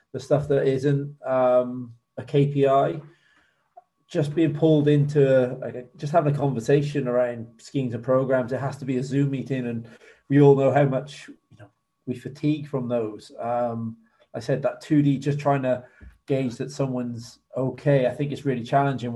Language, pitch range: English, 125-145 Hz